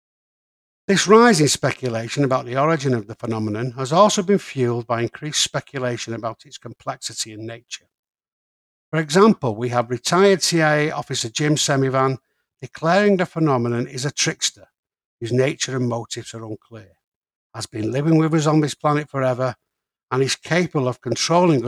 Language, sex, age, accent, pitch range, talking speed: English, male, 60-79, British, 120-155 Hz, 160 wpm